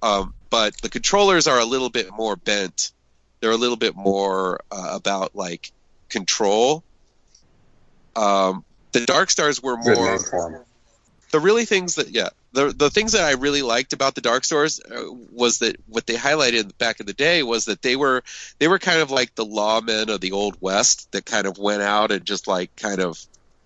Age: 30-49